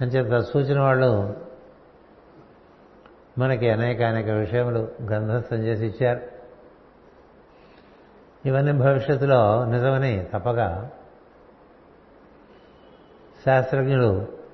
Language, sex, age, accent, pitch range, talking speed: Telugu, male, 60-79, native, 110-130 Hz, 60 wpm